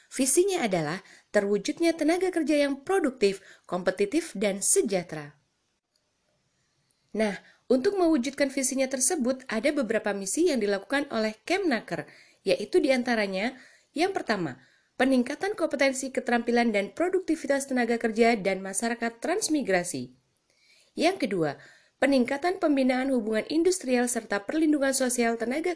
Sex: female